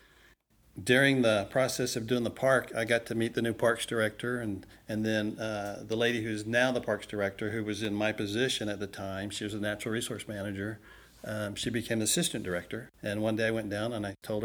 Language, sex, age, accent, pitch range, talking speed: English, male, 50-69, American, 105-120 Hz, 225 wpm